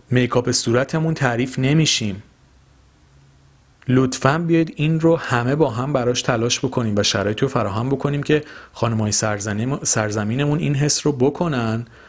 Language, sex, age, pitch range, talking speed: Persian, male, 40-59, 100-155 Hz, 130 wpm